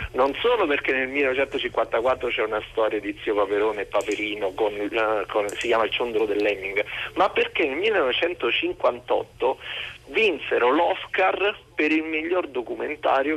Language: Italian